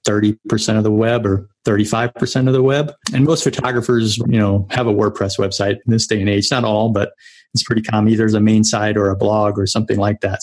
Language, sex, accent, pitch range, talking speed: English, male, American, 105-120 Hz, 235 wpm